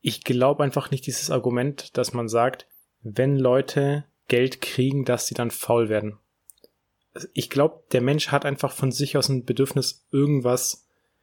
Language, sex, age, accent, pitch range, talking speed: German, male, 30-49, German, 120-145 Hz, 160 wpm